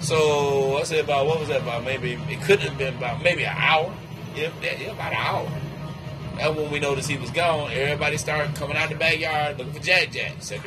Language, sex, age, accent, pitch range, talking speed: English, male, 30-49, American, 150-180 Hz, 220 wpm